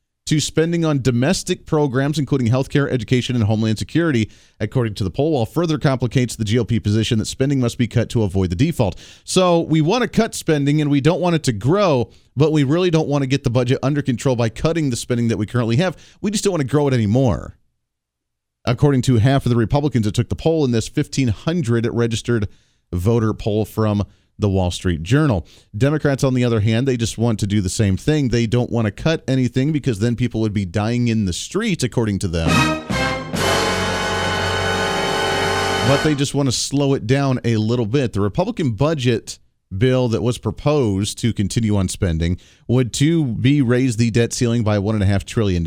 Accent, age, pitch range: American, 40-59, 110-140 Hz